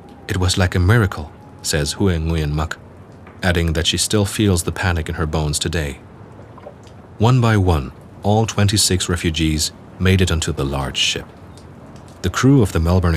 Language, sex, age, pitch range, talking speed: English, male, 30-49, 85-105 Hz, 170 wpm